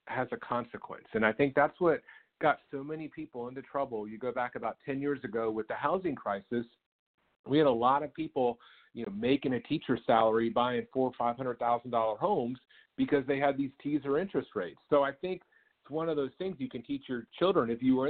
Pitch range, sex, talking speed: 120-145 Hz, male, 225 wpm